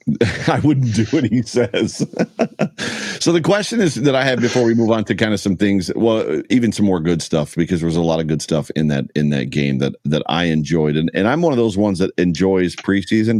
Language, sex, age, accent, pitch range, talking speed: English, male, 40-59, American, 85-115 Hz, 245 wpm